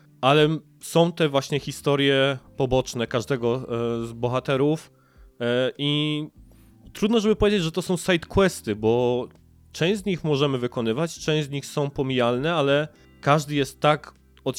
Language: Polish